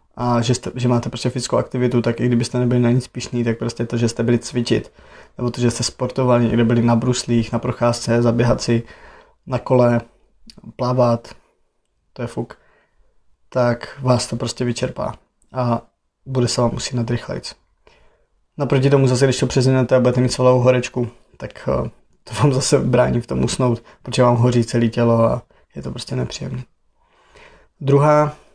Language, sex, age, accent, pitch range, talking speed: Czech, male, 20-39, native, 120-130 Hz, 170 wpm